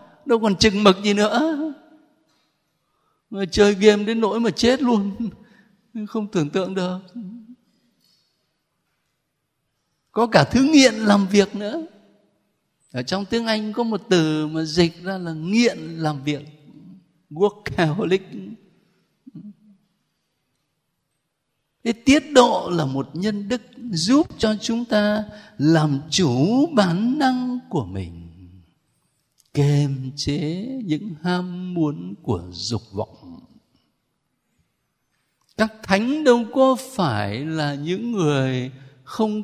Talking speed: 115 wpm